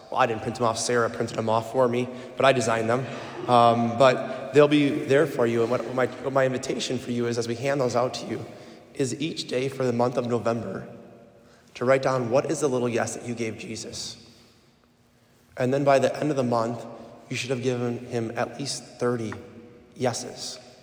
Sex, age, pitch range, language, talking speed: male, 20-39, 115-130 Hz, English, 220 wpm